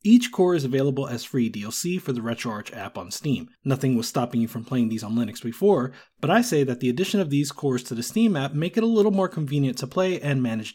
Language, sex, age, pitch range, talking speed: English, male, 20-39, 125-170 Hz, 255 wpm